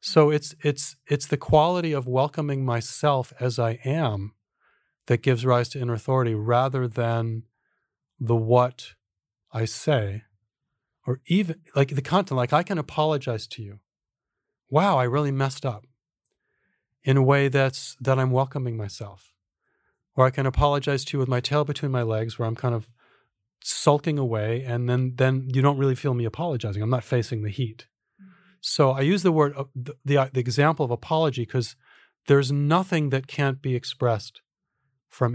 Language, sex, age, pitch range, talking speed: English, male, 40-59, 120-145 Hz, 165 wpm